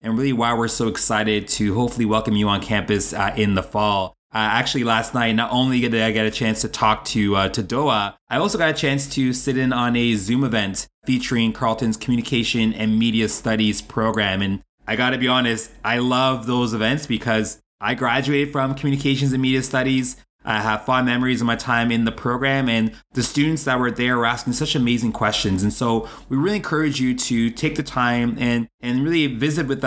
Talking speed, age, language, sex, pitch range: 215 wpm, 20-39, English, male, 110-135 Hz